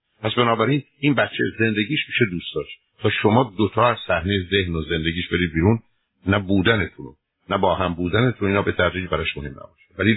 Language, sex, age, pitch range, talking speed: Persian, male, 60-79, 85-110 Hz, 170 wpm